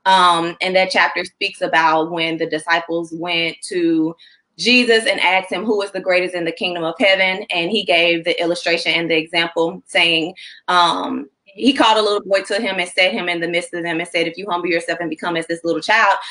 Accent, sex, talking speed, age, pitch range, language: American, female, 225 wpm, 20-39, 170-200 Hz, English